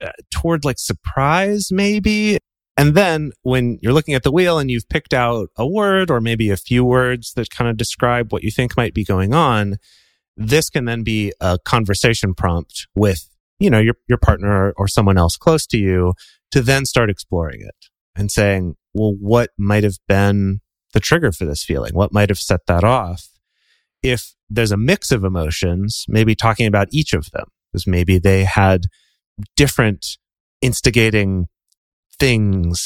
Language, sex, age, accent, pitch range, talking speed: English, male, 30-49, American, 95-125 Hz, 175 wpm